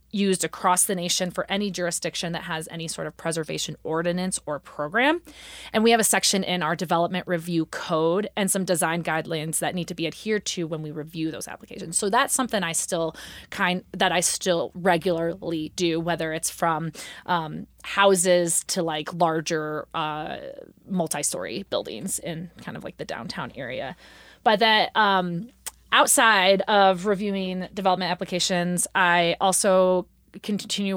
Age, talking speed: 30-49, 155 wpm